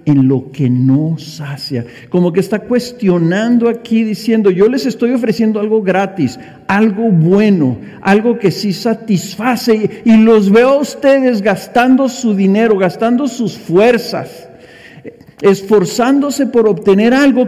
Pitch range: 160-230 Hz